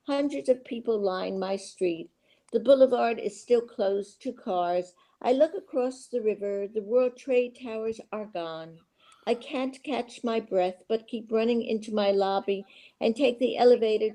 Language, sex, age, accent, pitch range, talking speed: English, female, 60-79, American, 190-240 Hz, 165 wpm